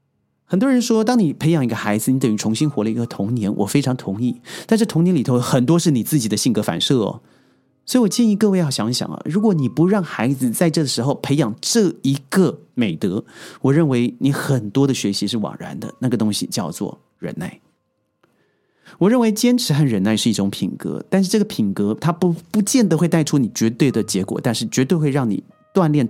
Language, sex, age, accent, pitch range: Chinese, male, 30-49, native, 115-175 Hz